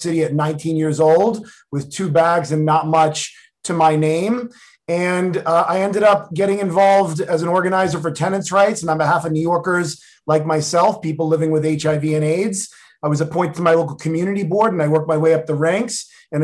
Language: English